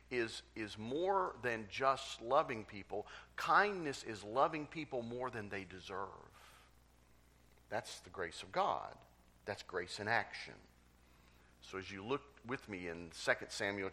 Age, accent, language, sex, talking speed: 50-69, American, English, male, 140 wpm